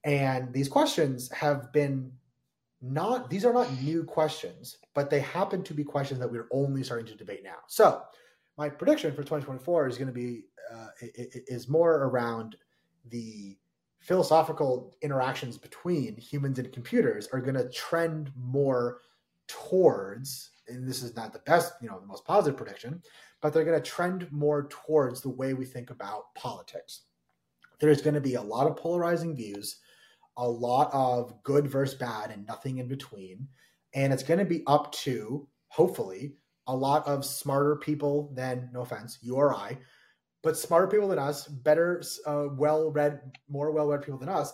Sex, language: male, English